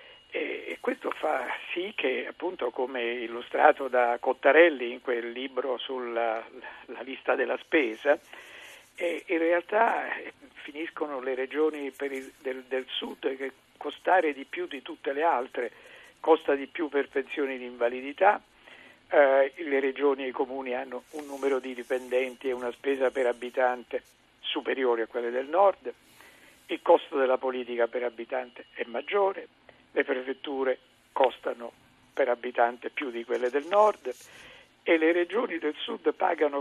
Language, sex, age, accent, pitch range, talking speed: Italian, male, 50-69, native, 125-175 Hz, 145 wpm